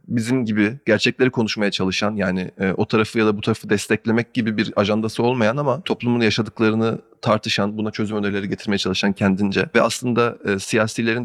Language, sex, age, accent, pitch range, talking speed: Turkish, male, 30-49, native, 110-125 Hz, 170 wpm